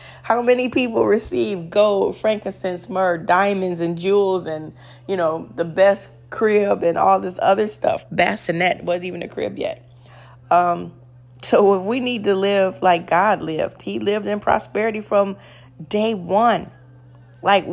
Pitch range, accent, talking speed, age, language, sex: 130-210 Hz, American, 150 wpm, 30-49, English, female